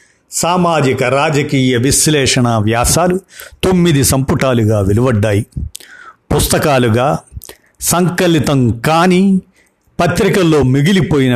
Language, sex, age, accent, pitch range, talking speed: Telugu, male, 50-69, native, 120-160 Hz, 55 wpm